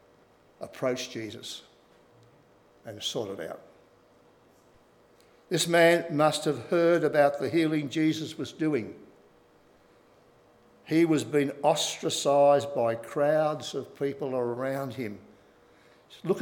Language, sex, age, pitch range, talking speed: English, male, 60-79, 105-150 Hz, 100 wpm